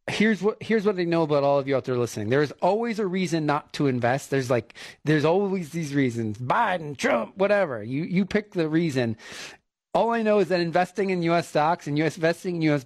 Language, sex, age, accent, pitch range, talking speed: English, male, 40-59, American, 140-185 Hz, 230 wpm